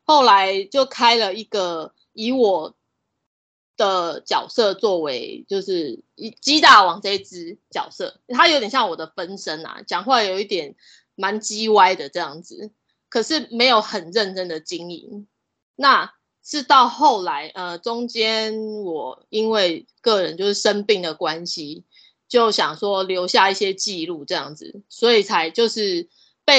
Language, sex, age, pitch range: Chinese, female, 20-39, 185-250 Hz